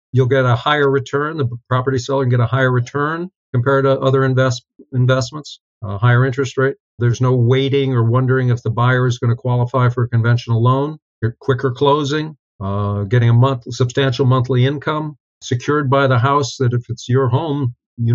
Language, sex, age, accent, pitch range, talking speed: English, male, 50-69, American, 120-140 Hz, 190 wpm